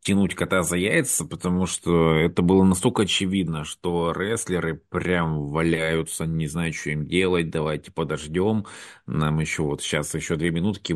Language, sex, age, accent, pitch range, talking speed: Russian, male, 30-49, native, 80-95 Hz, 155 wpm